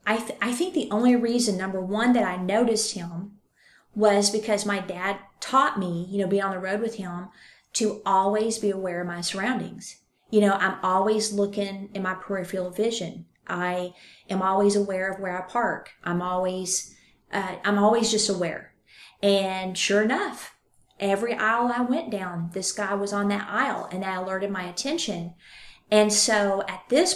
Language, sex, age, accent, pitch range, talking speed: English, female, 30-49, American, 190-220 Hz, 180 wpm